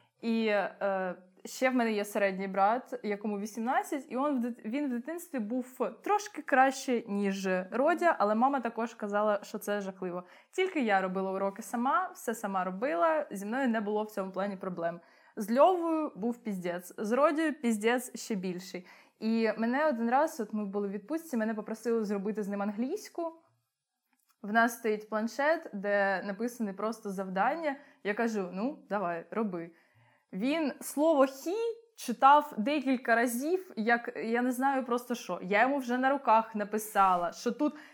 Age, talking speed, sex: 20-39, 155 wpm, female